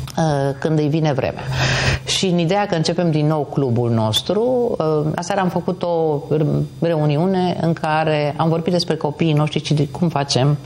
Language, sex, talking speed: Romanian, female, 150 wpm